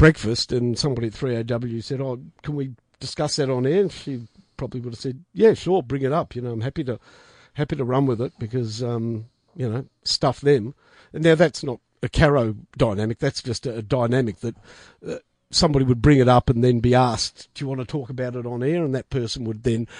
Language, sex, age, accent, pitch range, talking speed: English, male, 50-69, Australian, 115-145 Hz, 230 wpm